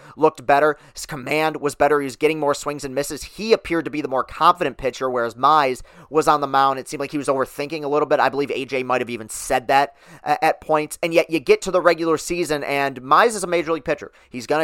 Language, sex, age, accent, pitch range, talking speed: English, male, 30-49, American, 135-170 Hz, 260 wpm